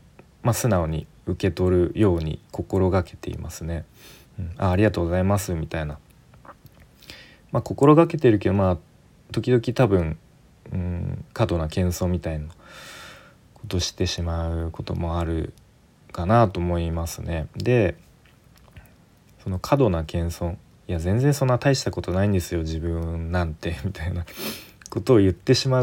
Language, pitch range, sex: Japanese, 85-115 Hz, male